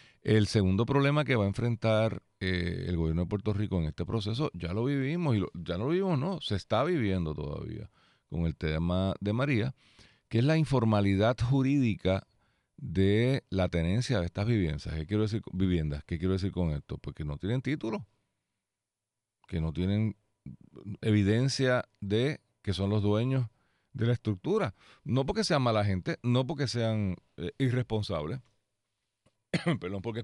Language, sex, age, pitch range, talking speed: Spanish, male, 40-59, 95-125 Hz, 155 wpm